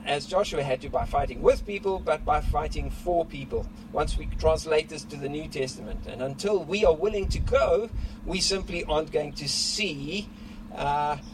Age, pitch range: 50-69, 125-190 Hz